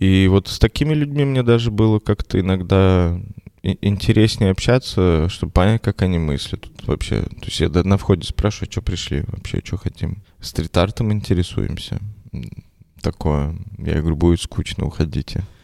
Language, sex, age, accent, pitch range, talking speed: Russian, male, 20-39, native, 80-100 Hz, 140 wpm